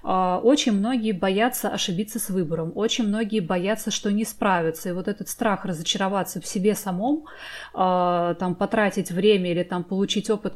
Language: Russian